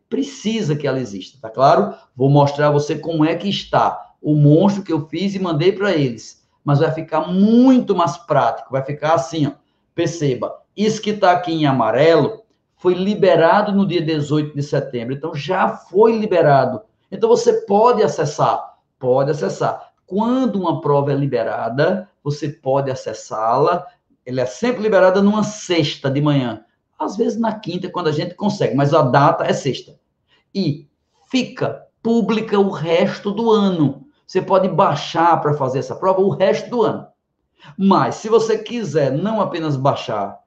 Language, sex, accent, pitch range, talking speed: Portuguese, male, Brazilian, 145-190 Hz, 165 wpm